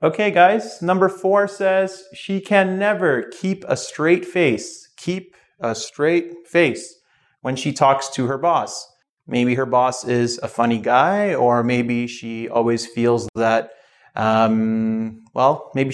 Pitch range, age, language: 120-175 Hz, 30-49, Chinese